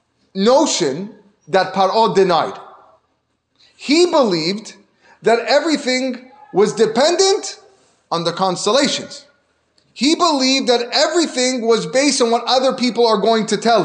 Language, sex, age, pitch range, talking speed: English, male, 30-49, 220-295 Hz, 115 wpm